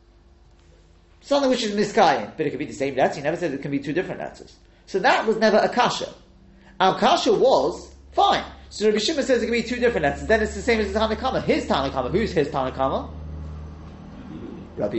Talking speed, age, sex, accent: 215 wpm, 30-49, male, British